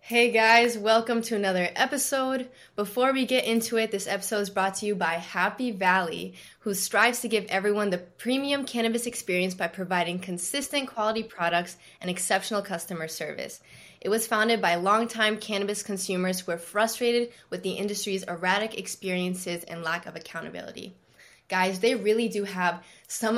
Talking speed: 160 wpm